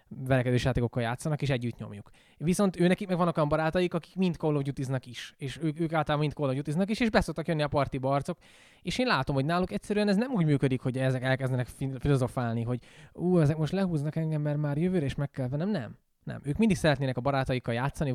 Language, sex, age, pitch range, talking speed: Hungarian, male, 20-39, 130-180 Hz, 210 wpm